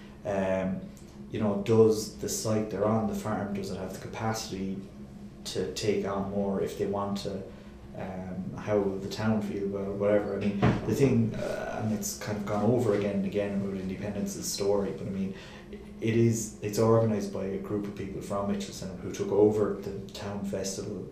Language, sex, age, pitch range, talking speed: English, male, 30-49, 100-105 Hz, 200 wpm